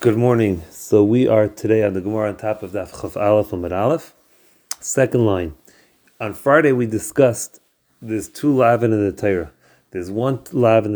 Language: English